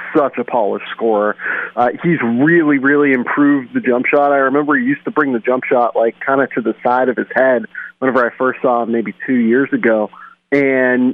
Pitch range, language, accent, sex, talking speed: 120-140 Hz, English, American, male, 215 wpm